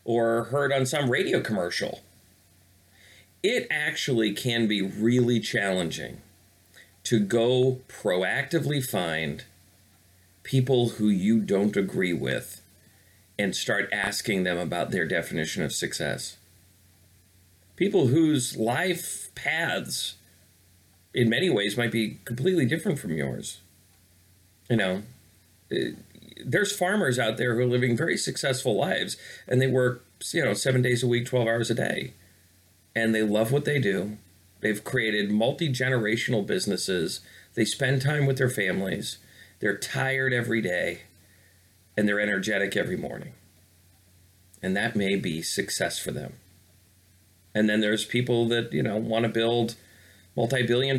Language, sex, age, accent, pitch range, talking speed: English, male, 40-59, American, 95-125 Hz, 130 wpm